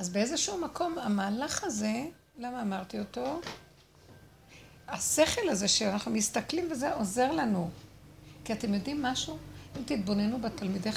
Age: 60-79